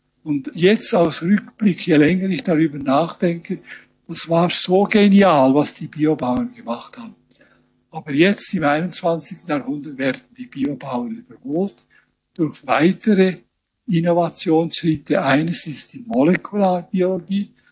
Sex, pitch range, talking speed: male, 150-195 Hz, 115 wpm